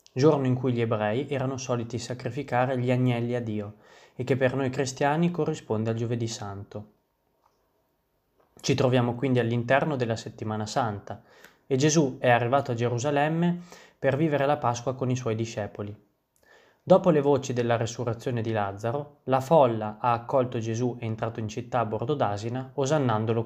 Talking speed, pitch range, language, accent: 160 wpm, 115-140 Hz, Italian, native